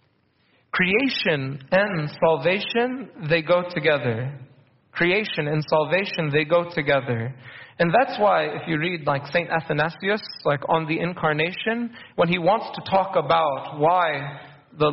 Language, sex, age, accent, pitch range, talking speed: English, male, 30-49, American, 150-200 Hz, 135 wpm